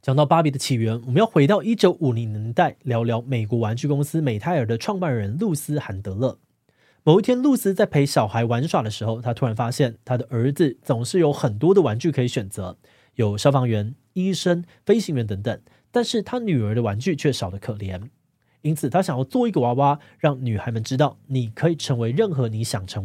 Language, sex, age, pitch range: Chinese, male, 20-39, 120-165 Hz